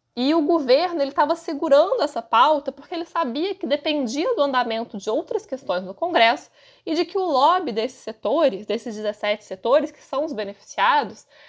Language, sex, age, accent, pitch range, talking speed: Portuguese, female, 20-39, Brazilian, 225-320 Hz, 170 wpm